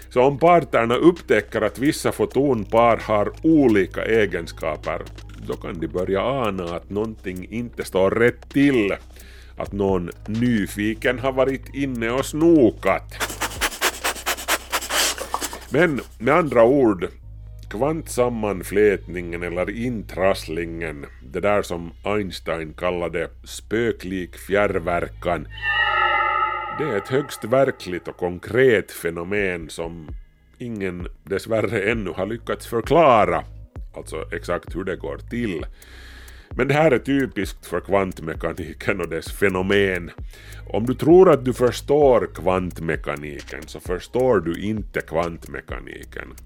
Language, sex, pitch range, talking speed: Swedish, male, 85-115 Hz, 110 wpm